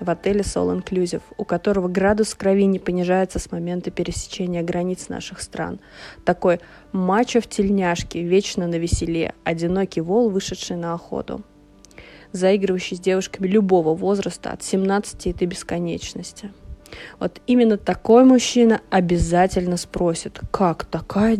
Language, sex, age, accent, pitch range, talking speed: Russian, female, 20-39, native, 175-215 Hz, 125 wpm